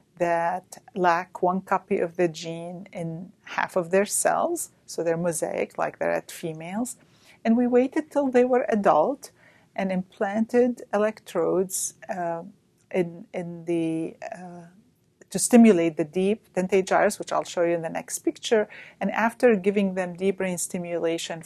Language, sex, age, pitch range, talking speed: English, female, 40-59, 170-220 Hz, 155 wpm